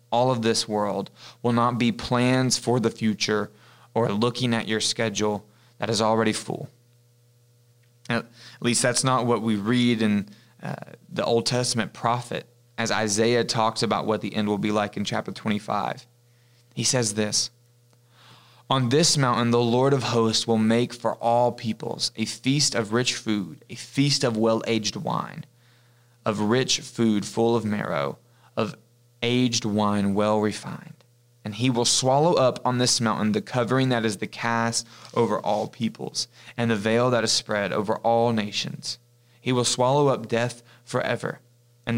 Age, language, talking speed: 20-39, English, 165 wpm